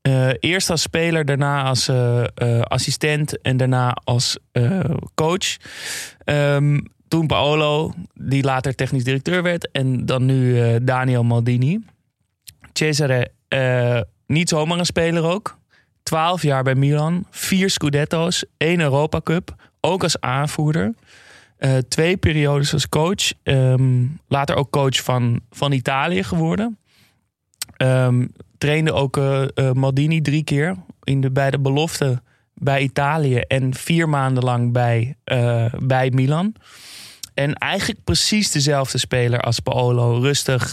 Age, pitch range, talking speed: 20-39, 125-150 Hz, 135 wpm